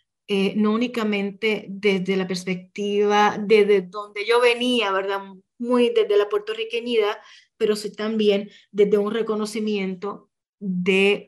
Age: 30-49